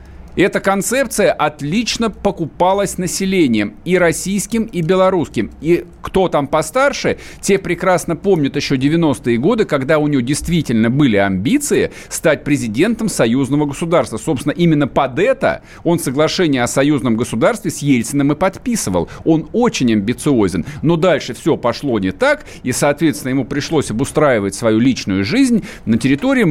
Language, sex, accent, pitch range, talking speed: Russian, male, native, 135-195 Hz, 140 wpm